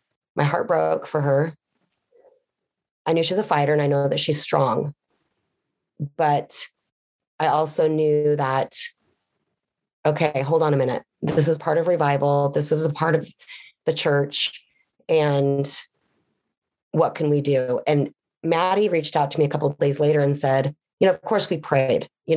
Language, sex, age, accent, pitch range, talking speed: English, female, 30-49, American, 145-180 Hz, 170 wpm